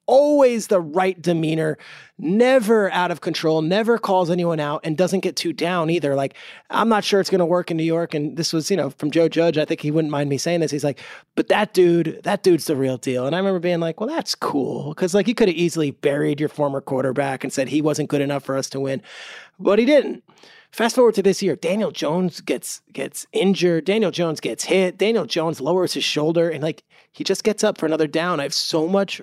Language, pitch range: English, 150-190 Hz